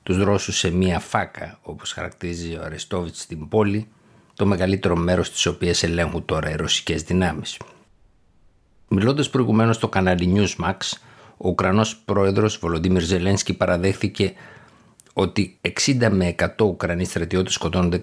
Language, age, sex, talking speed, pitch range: Greek, 60-79, male, 130 wpm, 90-105 Hz